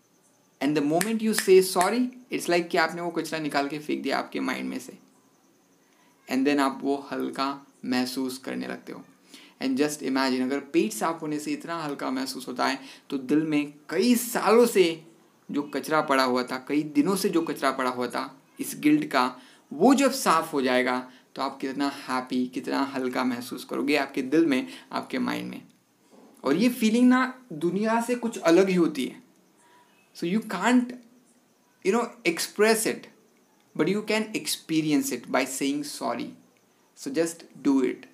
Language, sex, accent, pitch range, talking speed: Hindi, male, native, 140-220 Hz, 180 wpm